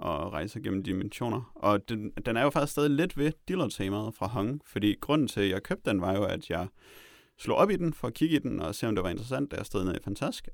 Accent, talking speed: native, 270 wpm